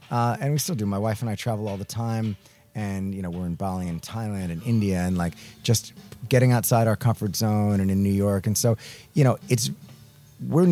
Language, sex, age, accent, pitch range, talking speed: English, male, 30-49, American, 100-125 Hz, 230 wpm